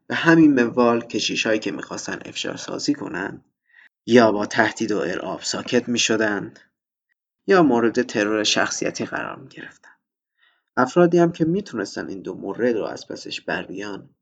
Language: Persian